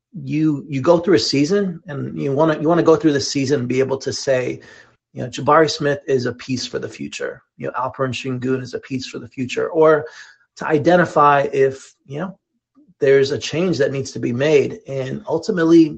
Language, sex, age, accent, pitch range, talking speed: English, male, 30-49, American, 130-175 Hz, 220 wpm